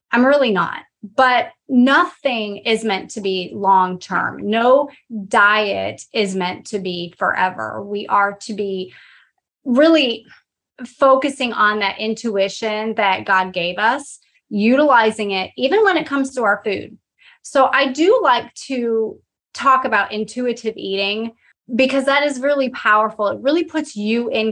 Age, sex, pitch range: 30-49, female, 205-270 Hz